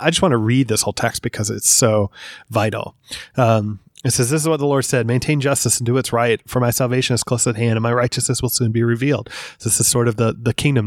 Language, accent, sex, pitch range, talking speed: English, American, male, 115-140 Hz, 265 wpm